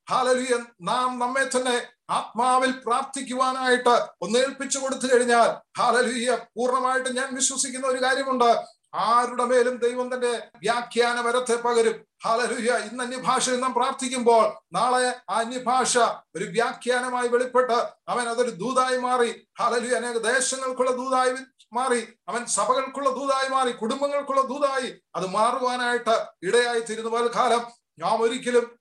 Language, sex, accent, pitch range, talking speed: Malayalam, male, native, 235-265 Hz, 115 wpm